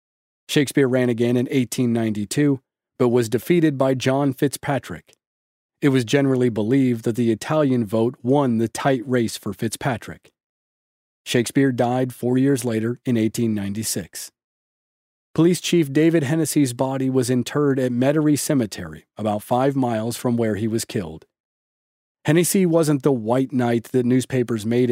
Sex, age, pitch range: male, 40-59, 115-140 Hz